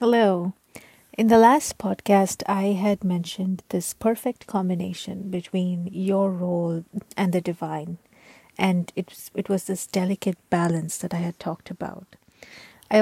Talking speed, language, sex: 140 wpm, English, female